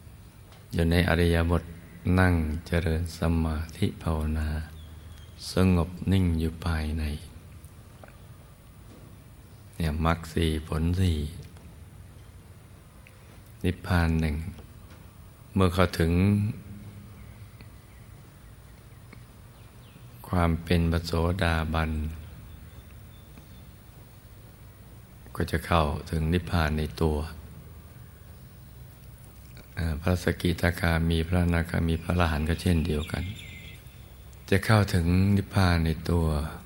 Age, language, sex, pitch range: 60-79, Thai, male, 80-105 Hz